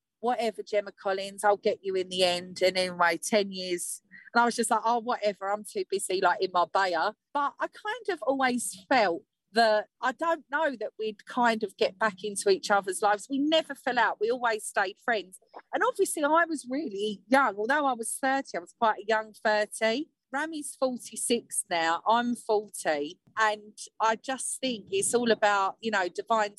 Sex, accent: female, British